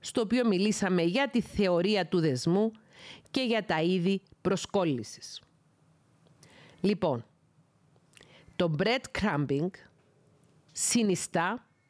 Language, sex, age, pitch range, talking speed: Greek, female, 40-59, 160-225 Hz, 85 wpm